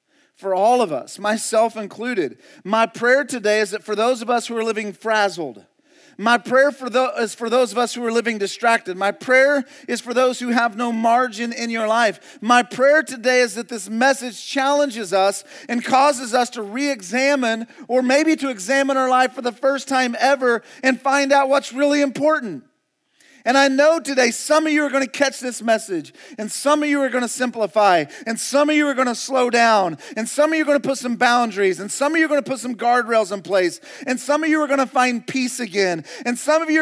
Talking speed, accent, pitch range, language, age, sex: 220 wpm, American, 230-275 Hz, English, 40-59, male